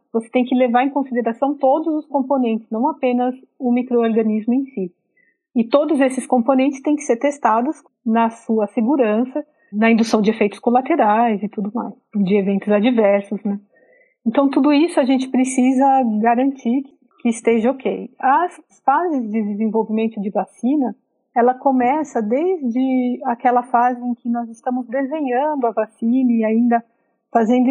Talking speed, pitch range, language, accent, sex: 150 wpm, 220-260 Hz, Portuguese, Brazilian, female